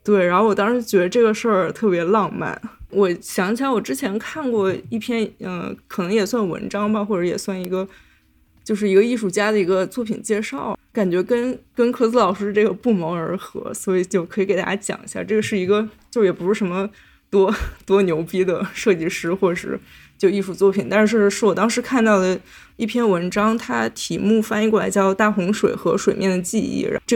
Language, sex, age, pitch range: Chinese, female, 20-39, 185-215 Hz